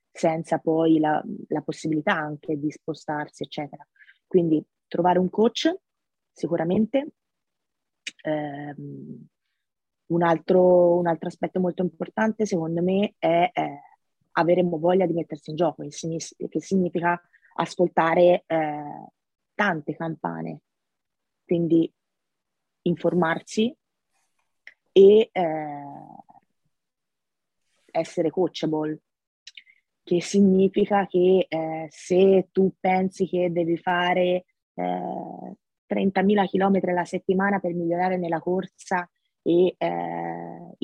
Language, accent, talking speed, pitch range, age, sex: Italian, native, 95 wpm, 155-185 Hz, 30-49, female